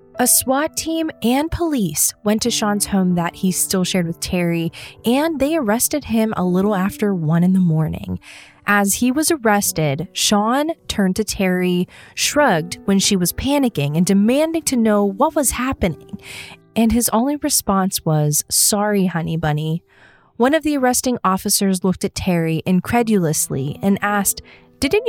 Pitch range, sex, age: 175-230 Hz, female, 20-39